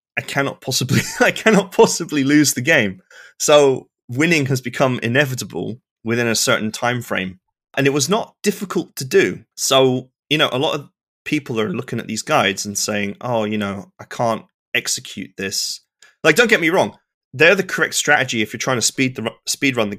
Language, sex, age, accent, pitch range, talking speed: English, male, 30-49, British, 105-130 Hz, 195 wpm